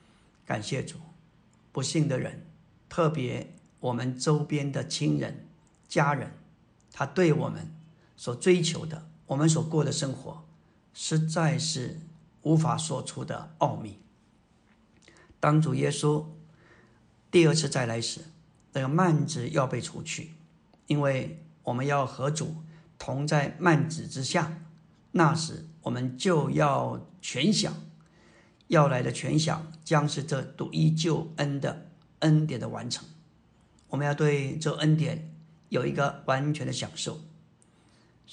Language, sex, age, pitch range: Chinese, male, 50-69, 145-165 Hz